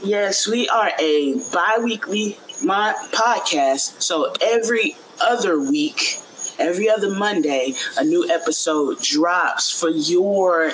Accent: American